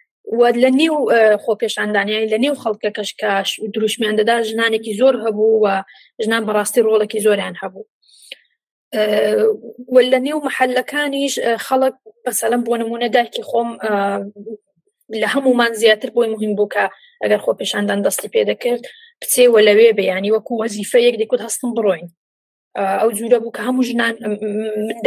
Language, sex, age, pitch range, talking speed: Persian, female, 30-49, 210-240 Hz, 130 wpm